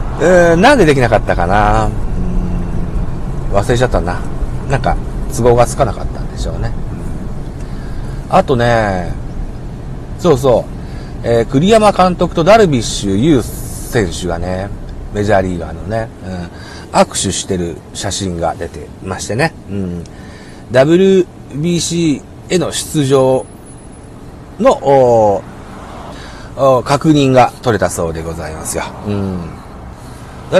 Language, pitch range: Japanese, 90-145 Hz